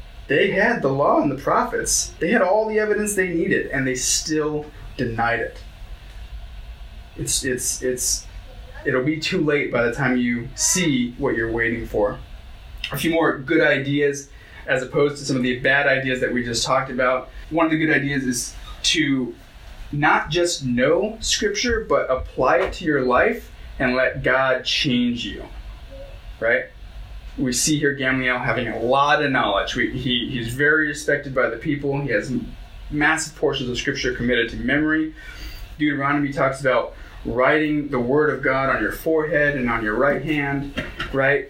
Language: English